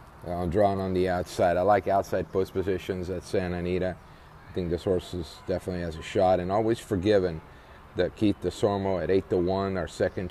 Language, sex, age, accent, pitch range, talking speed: English, male, 40-59, American, 90-105 Hz, 185 wpm